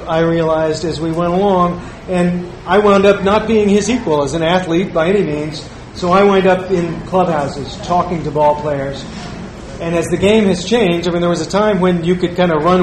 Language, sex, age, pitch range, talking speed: English, male, 40-59, 155-185 Hz, 220 wpm